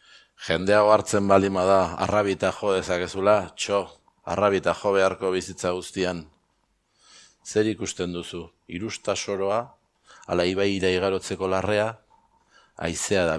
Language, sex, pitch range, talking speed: Spanish, male, 85-95 Hz, 105 wpm